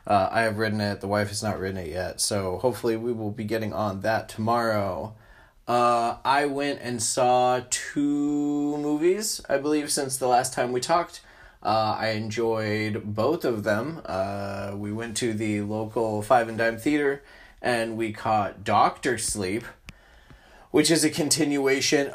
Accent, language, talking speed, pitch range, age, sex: American, English, 165 wpm, 105-125 Hz, 20-39, male